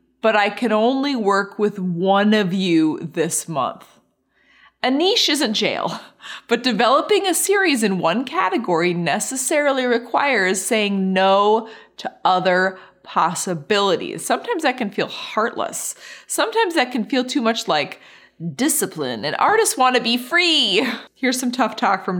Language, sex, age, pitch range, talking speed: English, female, 20-39, 175-255 Hz, 140 wpm